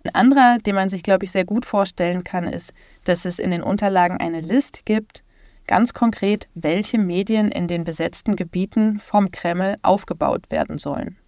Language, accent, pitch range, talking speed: German, German, 175-215 Hz, 175 wpm